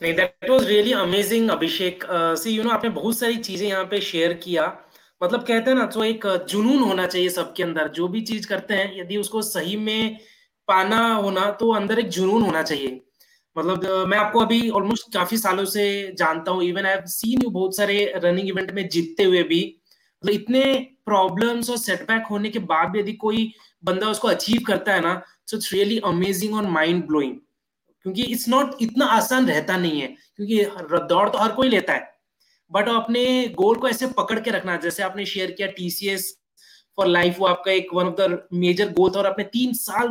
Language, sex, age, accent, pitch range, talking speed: Hindi, male, 20-39, native, 180-225 Hz, 195 wpm